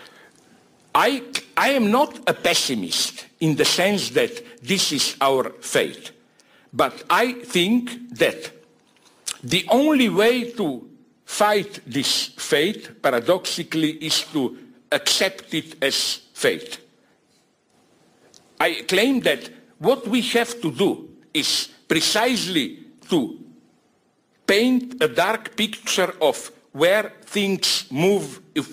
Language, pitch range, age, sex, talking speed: English, 160-240 Hz, 60-79, male, 110 wpm